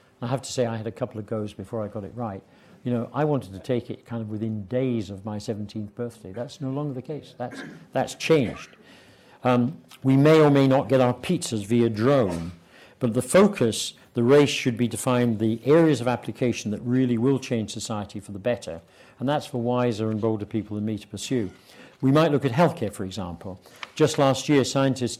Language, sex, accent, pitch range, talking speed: English, male, British, 110-130 Hz, 220 wpm